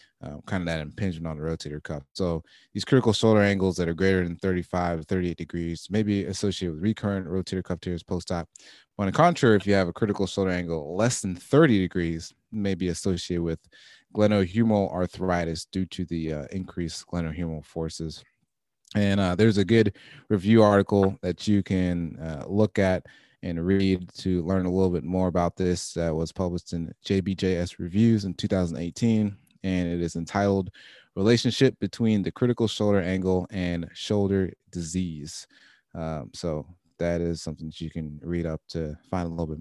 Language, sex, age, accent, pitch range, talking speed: English, male, 30-49, American, 85-100 Hz, 175 wpm